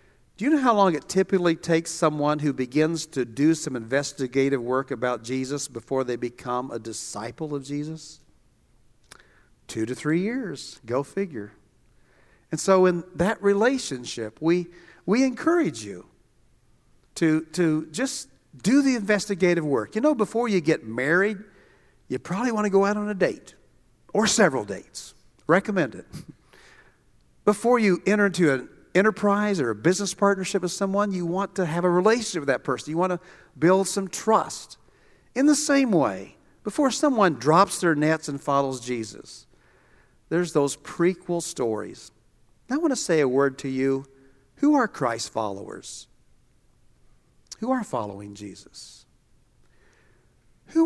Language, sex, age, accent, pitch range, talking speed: English, male, 50-69, American, 135-205 Hz, 150 wpm